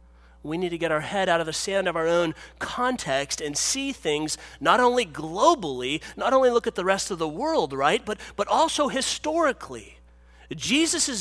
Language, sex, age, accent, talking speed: English, male, 30-49, American, 185 wpm